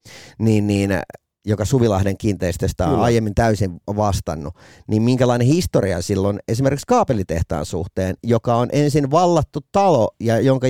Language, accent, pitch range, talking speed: Finnish, native, 105-145 Hz, 130 wpm